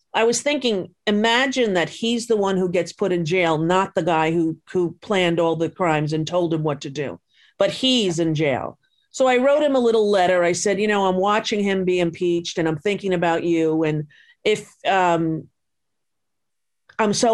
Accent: American